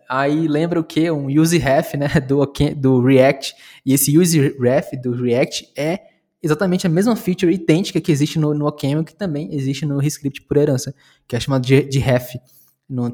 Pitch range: 130-155 Hz